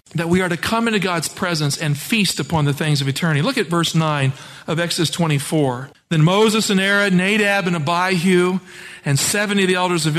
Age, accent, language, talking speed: 40-59, American, English, 205 wpm